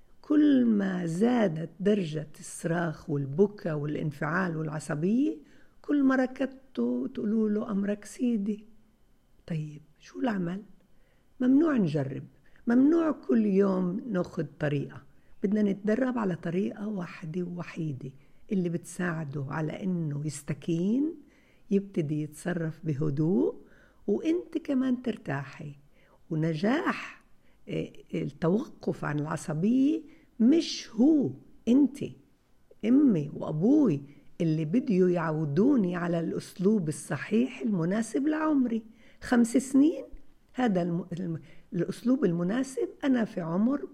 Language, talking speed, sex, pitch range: Arabic, 95 wpm, female, 155-235 Hz